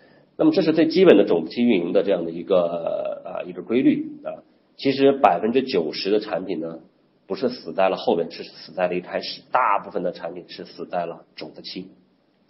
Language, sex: Chinese, male